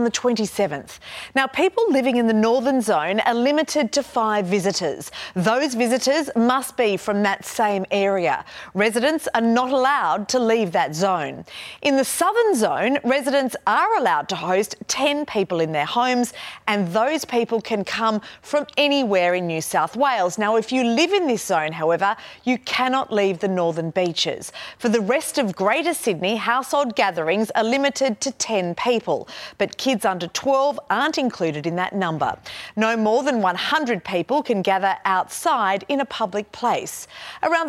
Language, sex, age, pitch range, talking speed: English, female, 30-49, 190-270 Hz, 170 wpm